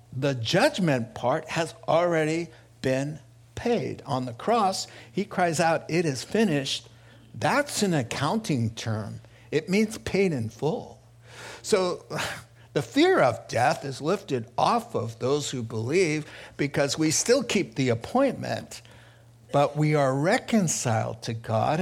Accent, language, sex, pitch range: American, English, male, 120-165 Hz